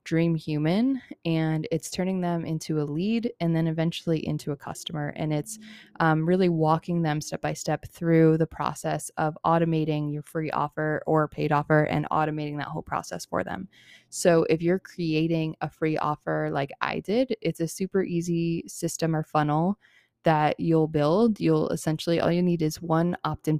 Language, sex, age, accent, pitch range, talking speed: English, female, 20-39, American, 155-170 Hz, 175 wpm